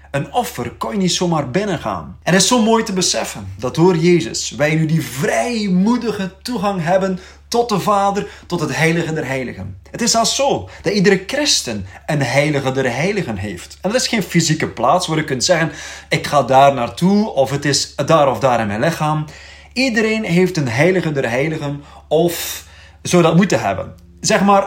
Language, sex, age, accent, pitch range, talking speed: Dutch, male, 30-49, Dutch, 135-195 Hz, 190 wpm